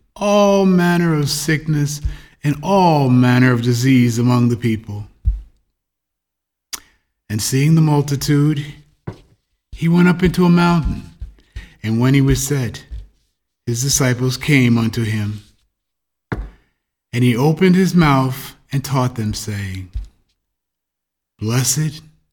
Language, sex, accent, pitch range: English, male, American, 100-150 Hz